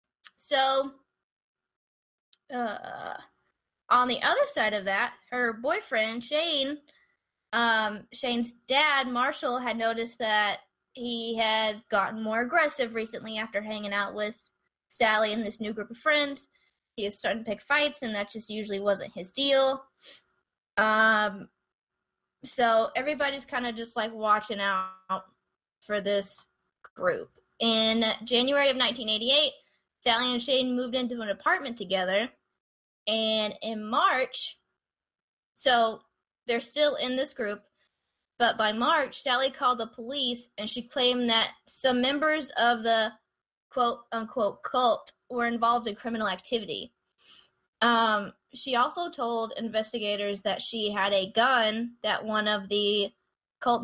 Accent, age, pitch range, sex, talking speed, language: American, 10-29, 210-255 Hz, female, 130 wpm, English